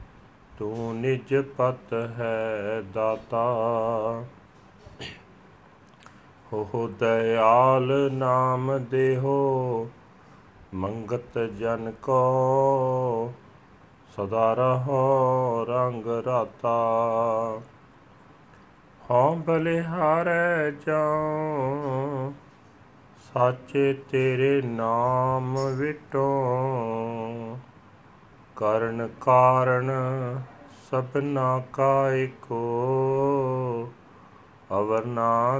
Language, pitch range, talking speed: Punjabi, 115-135 Hz, 50 wpm